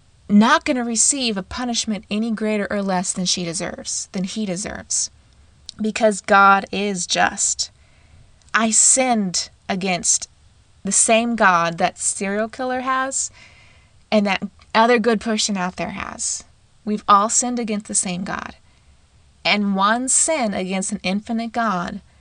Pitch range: 185-225 Hz